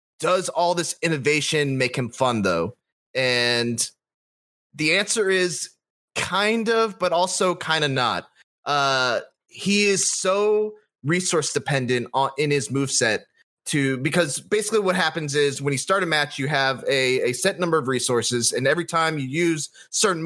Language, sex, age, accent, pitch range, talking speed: English, male, 20-39, American, 135-175 Hz, 155 wpm